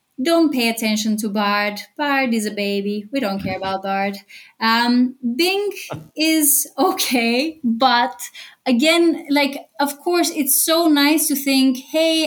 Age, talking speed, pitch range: 20-39, 140 wpm, 215-275 Hz